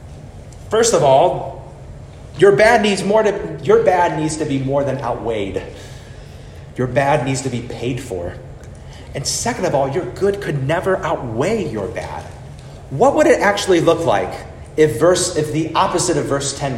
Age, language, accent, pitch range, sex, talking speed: 30-49, English, American, 120-150 Hz, male, 170 wpm